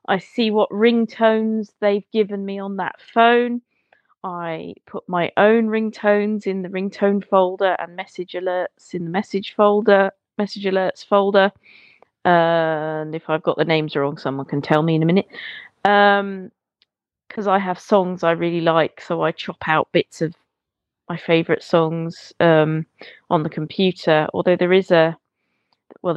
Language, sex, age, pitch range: English, female, 30-49, 165-210 Hz